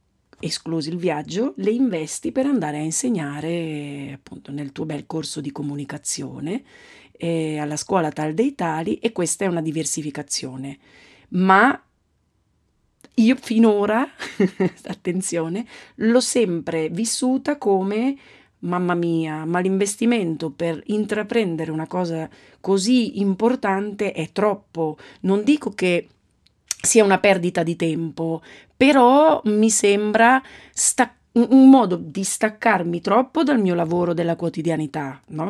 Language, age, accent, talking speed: Italian, 40-59, native, 120 wpm